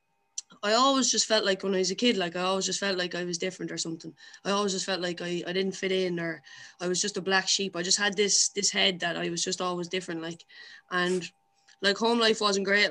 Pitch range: 175-195 Hz